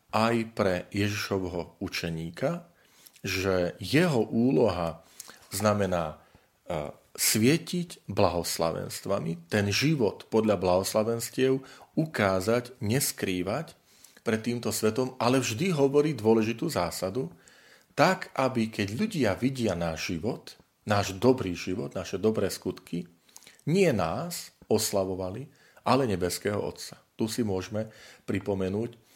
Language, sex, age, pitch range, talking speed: Slovak, male, 40-59, 95-125 Hz, 95 wpm